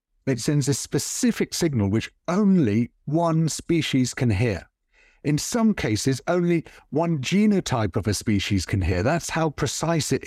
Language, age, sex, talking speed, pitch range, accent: English, 50-69, male, 150 wpm, 115-160 Hz, British